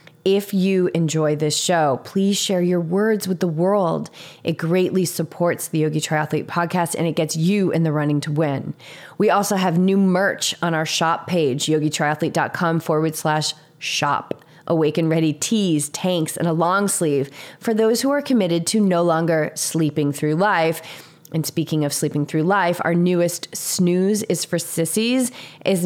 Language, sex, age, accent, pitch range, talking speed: English, female, 30-49, American, 155-190 Hz, 170 wpm